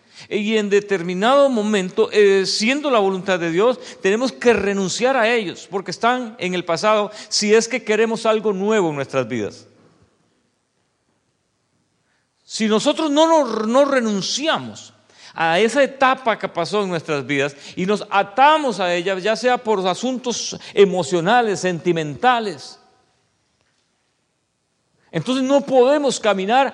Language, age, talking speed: English, 50-69, 130 wpm